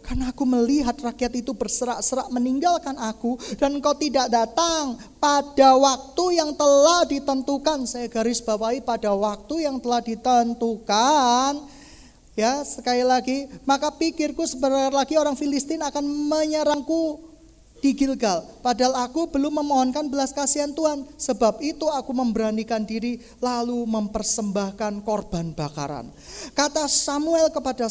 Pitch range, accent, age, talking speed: 230-290 Hz, native, 20-39, 125 wpm